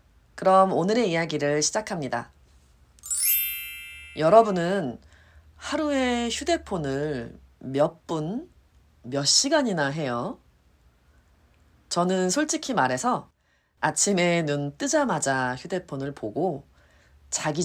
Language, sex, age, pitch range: Korean, female, 30-49, 120-195 Hz